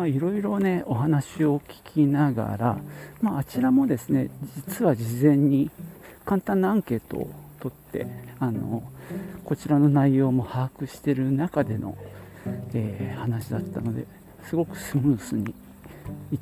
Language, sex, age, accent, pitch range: Japanese, male, 50-69, native, 115-150 Hz